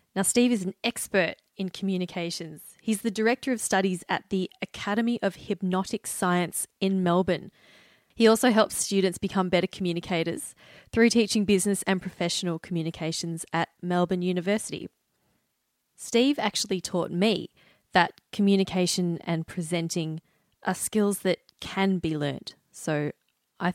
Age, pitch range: 20-39, 170-215 Hz